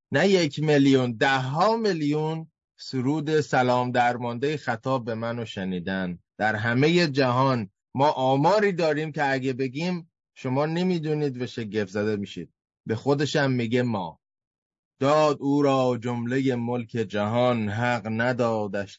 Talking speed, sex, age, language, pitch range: 125 wpm, male, 20-39, Persian, 100-140 Hz